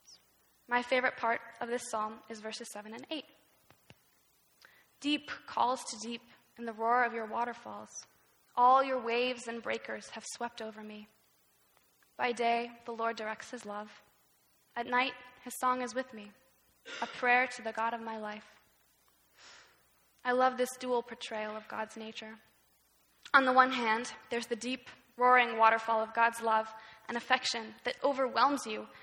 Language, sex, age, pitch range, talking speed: English, female, 10-29, 220-250 Hz, 160 wpm